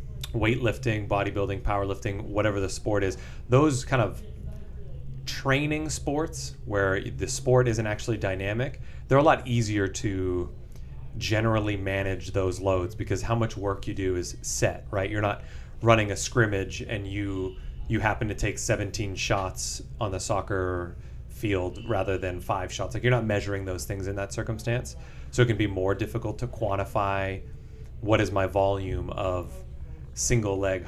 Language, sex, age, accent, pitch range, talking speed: English, male, 30-49, American, 90-110 Hz, 155 wpm